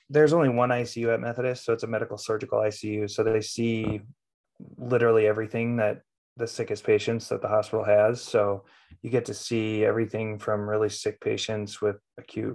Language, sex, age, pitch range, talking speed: English, male, 20-39, 105-125 Hz, 175 wpm